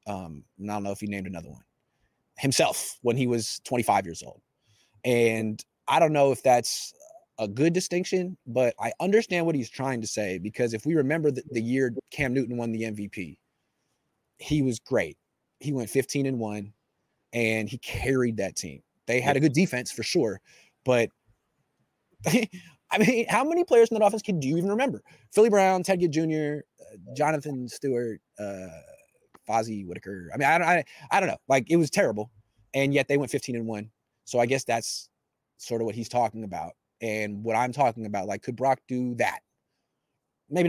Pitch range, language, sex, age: 105-140 Hz, English, male, 20-39